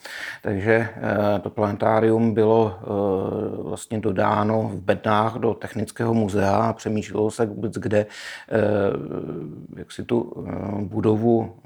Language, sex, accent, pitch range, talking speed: Czech, male, native, 100-115 Hz, 105 wpm